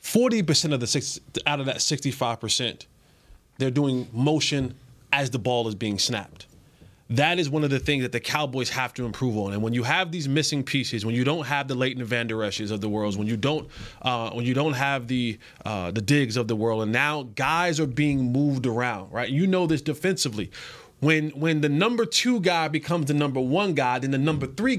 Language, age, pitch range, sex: English, 30-49, 135-180 Hz, male